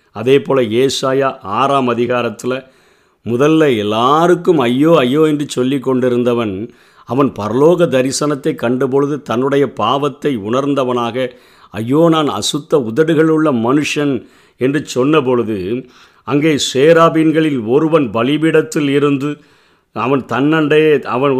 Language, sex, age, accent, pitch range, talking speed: Tamil, male, 50-69, native, 120-160 Hz, 100 wpm